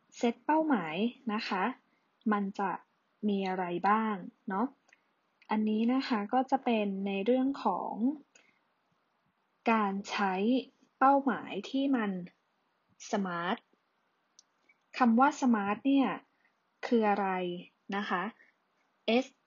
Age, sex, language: 20-39, female, Thai